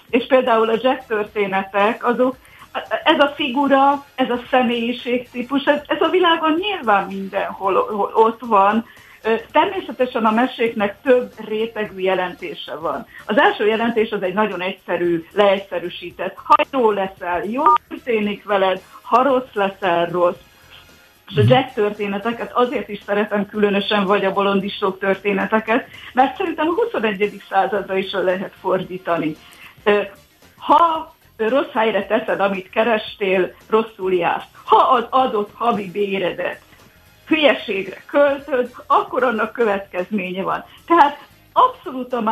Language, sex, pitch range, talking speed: Hungarian, female, 195-250 Hz, 120 wpm